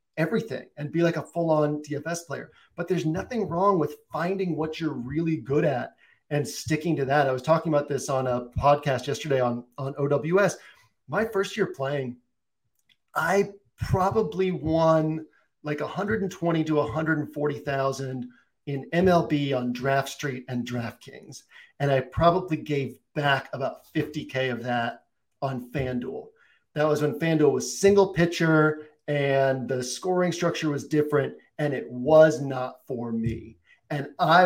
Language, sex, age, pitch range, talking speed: English, male, 40-59, 135-165 Hz, 150 wpm